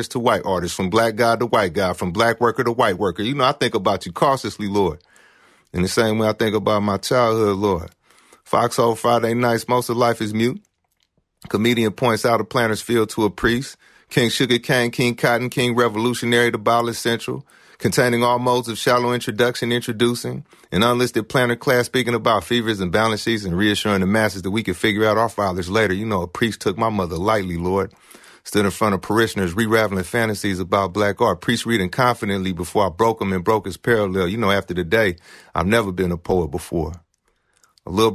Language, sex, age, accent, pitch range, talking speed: English, male, 30-49, American, 95-115 Hz, 210 wpm